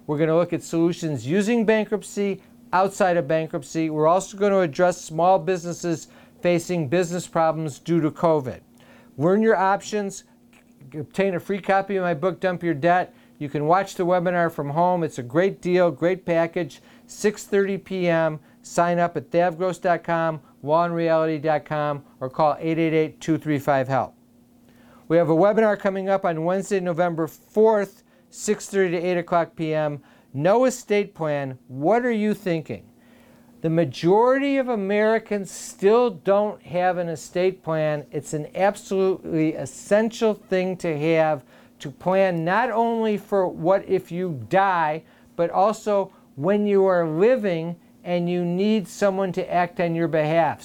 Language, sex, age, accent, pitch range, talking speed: English, male, 50-69, American, 160-195 Hz, 145 wpm